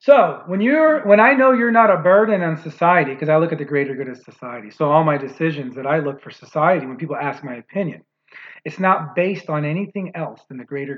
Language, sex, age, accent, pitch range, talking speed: English, male, 40-59, American, 145-190 Hz, 240 wpm